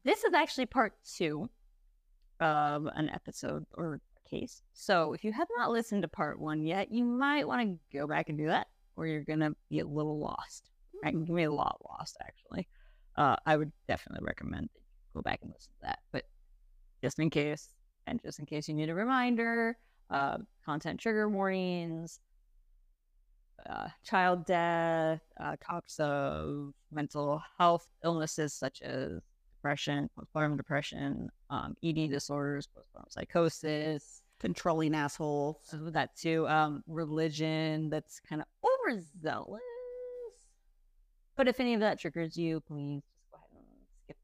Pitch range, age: 150-195 Hz, 20-39